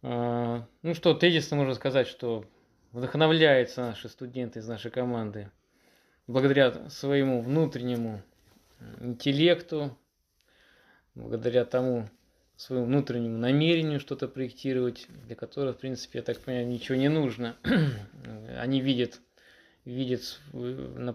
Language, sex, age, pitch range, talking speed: Russian, male, 20-39, 120-135 Hz, 105 wpm